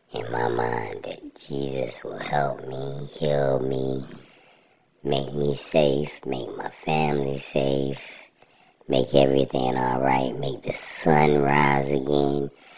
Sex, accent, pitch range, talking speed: male, American, 65-75 Hz, 115 wpm